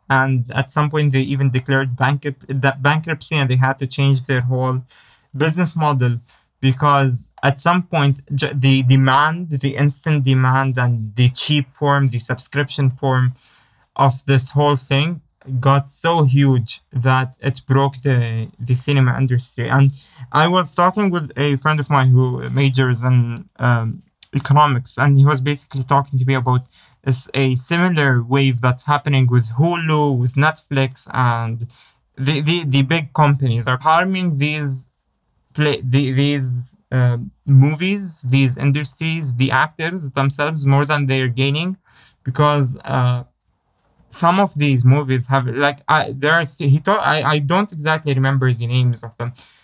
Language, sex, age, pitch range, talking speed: English, male, 20-39, 130-150 Hz, 150 wpm